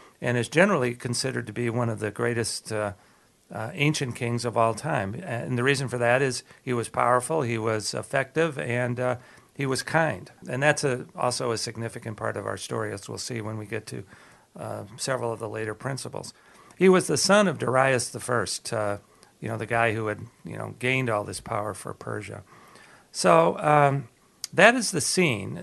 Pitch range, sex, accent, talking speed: 110-135 Hz, male, American, 200 wpm